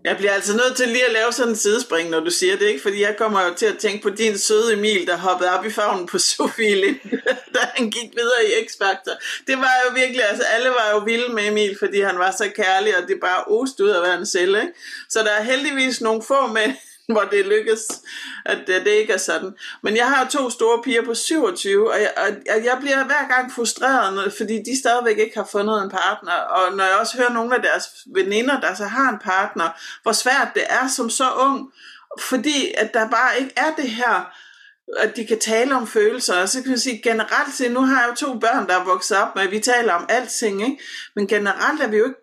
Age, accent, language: 60-79, native, Danish